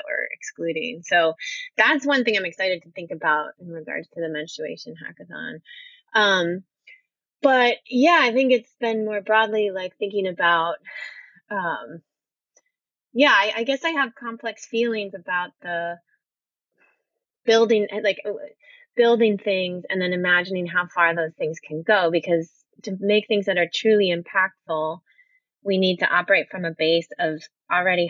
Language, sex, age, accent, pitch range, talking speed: English, female, 20-39, American, 170-230 Hz, 150 wpm